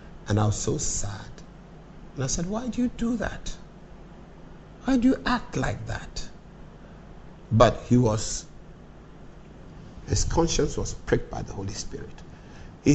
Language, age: English, 50-69